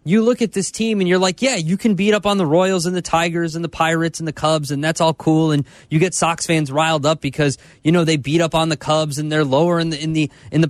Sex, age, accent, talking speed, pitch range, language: male, 20-39, American, 305 wpm, 150-200 Hz, English